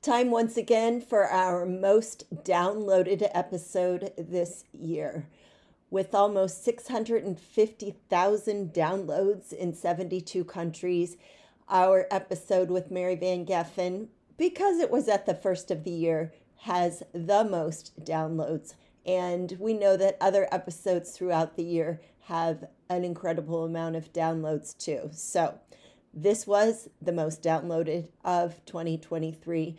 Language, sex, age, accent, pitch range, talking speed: English, female, 40-59, American, 165-195 Hz, 120 wpm